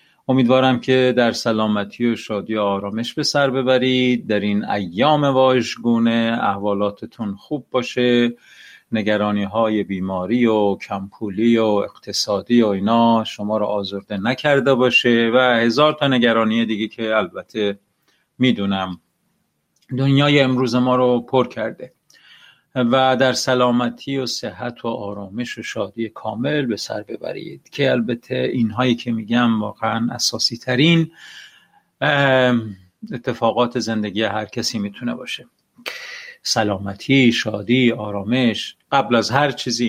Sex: male